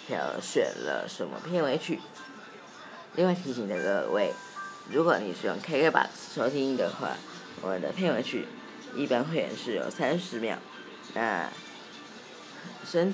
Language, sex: Chinese, female